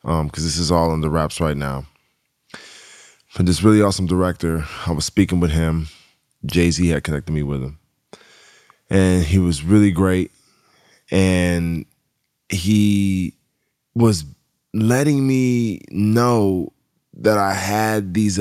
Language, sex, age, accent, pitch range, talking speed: English, male, 20-39, American, 90-115 Hz, 135 wpm